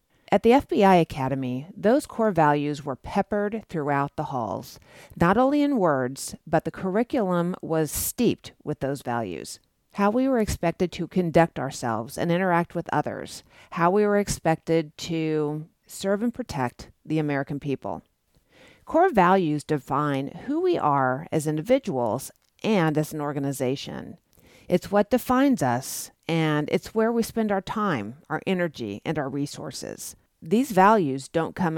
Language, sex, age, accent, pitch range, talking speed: English, female, 40-59, American, 145-205 Hz, 145 wpm